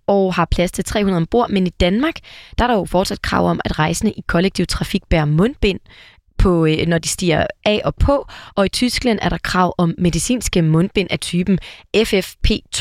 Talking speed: 190 wpm